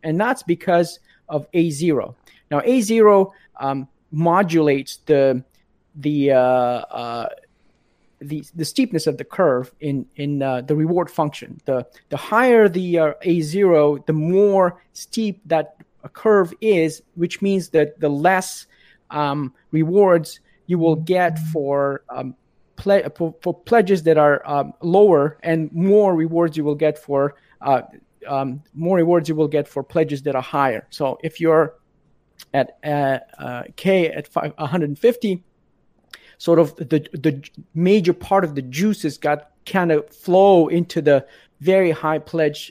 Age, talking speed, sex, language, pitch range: 30-49, 150 wpm, male, English, 145-175 Hz